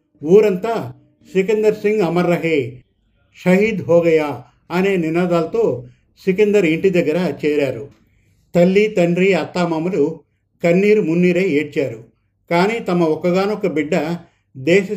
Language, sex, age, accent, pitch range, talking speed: Telugu, male, 50-69, native, 140-180 Hz, 95 wpm